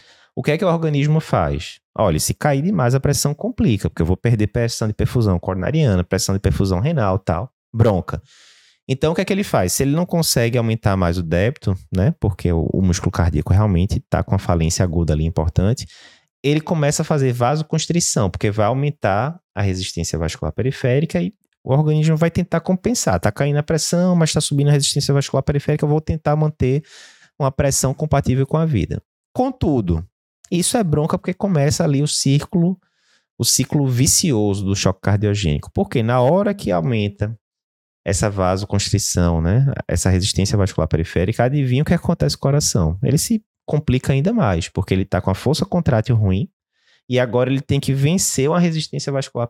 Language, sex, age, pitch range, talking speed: Portuguese, male, 20-39, 95-150 Hz, 185 wpm